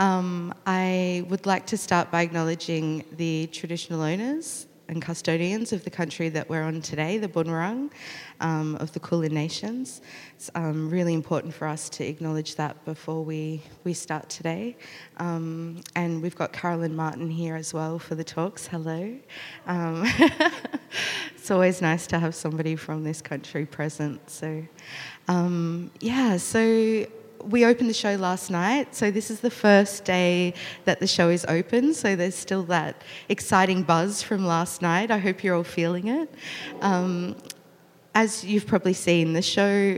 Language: English